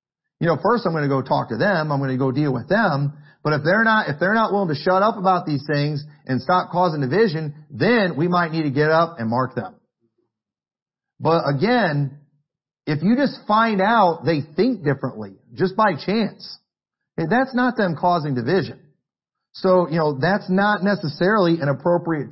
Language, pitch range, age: English, 150-215 Hz, 40-59